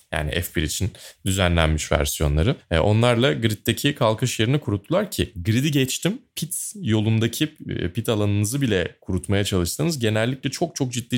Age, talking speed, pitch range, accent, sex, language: 30-49, 130 wpm, 90-125 Hz, native, male, Turkish